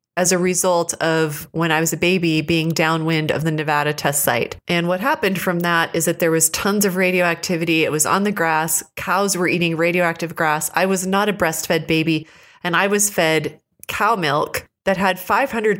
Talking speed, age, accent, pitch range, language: 200 wpm, 30-49, American, 160-195 Hz, English